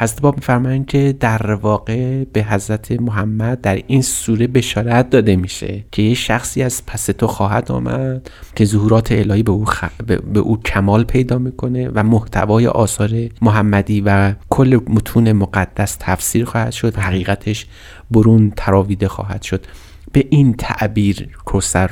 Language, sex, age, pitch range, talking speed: Persian, male, 30-49, 100-115 Hz, 150 wpm